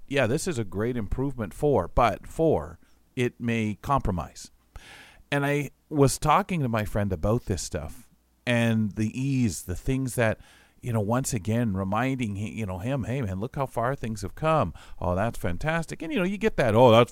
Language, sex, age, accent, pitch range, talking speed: English, male, 40-59, American, 95-125 Hz, 195 wpm